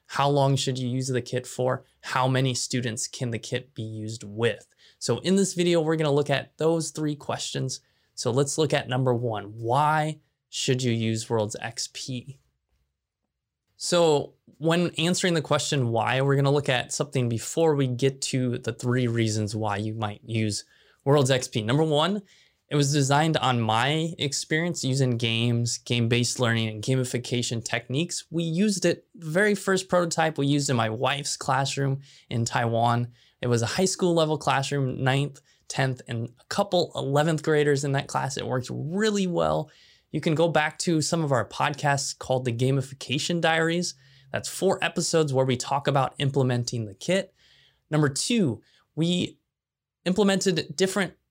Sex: male